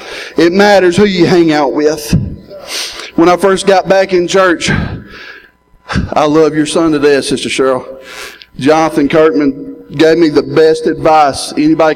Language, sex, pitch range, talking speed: English, male, 150-175 Hz, 150 wpm